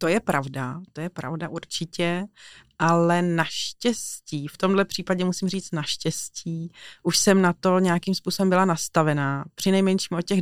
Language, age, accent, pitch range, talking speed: Czech, 30-49, native, 155-175 Hz, 155 wpm